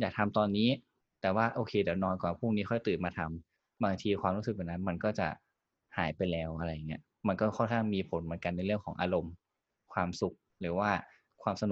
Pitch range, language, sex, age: 90-115 Hz, Thai, male, 20-39